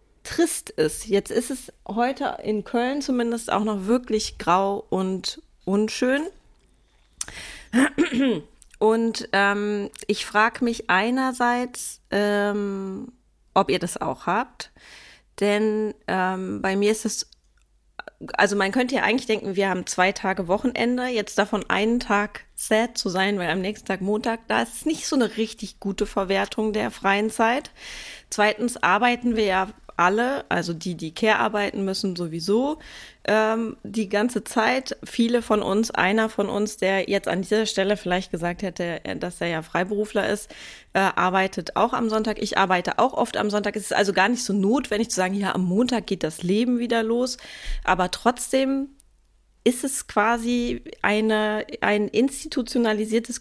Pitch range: 195-240 Hz